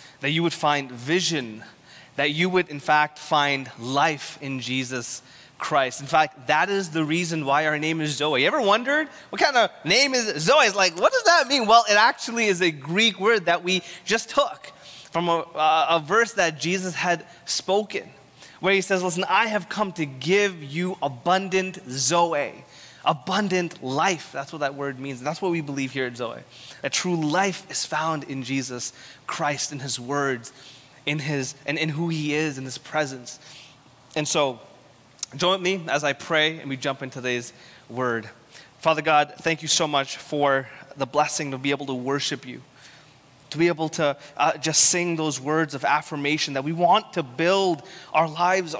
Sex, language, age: male, English, 20-39